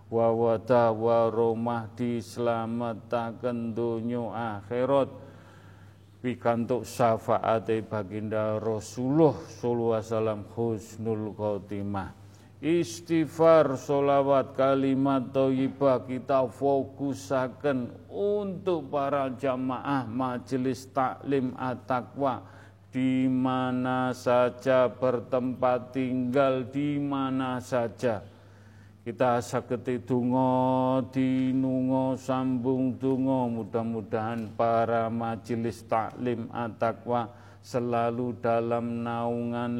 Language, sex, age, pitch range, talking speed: Indonesian, male, 40-59, 115-130 Hz, 75 wpm